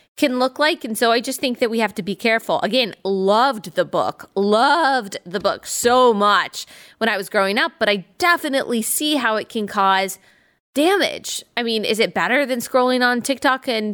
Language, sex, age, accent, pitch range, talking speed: English, female, 20-39, American, 190-250 Hz, 200 wpm